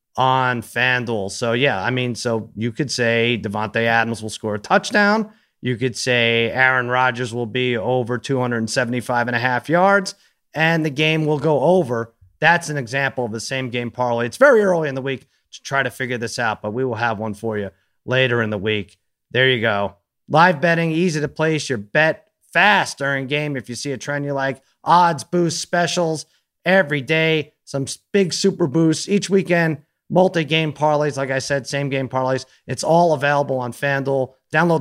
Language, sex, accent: English, male, American